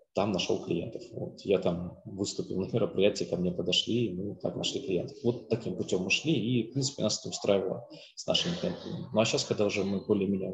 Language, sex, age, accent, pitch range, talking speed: Russian, male, 20-39, native, 95-120 Hz, 210 wpm